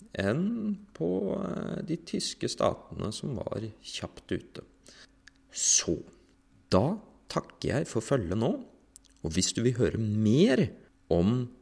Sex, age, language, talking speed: male, 30-49, English, 125 wpm